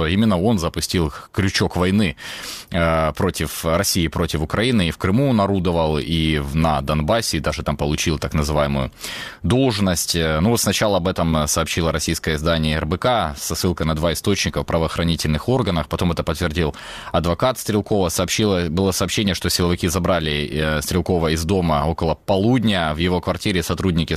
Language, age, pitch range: Ukrainian, 20-39, 80-100 Hz